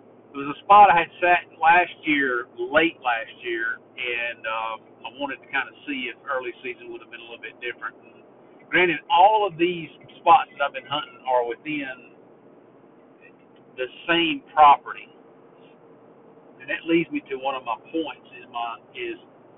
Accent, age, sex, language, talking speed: American, 50-69, male, English, 175 wpm